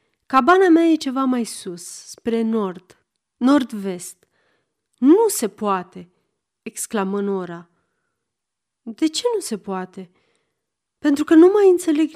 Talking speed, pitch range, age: 125 wpm, 195-285 Hz, 30-49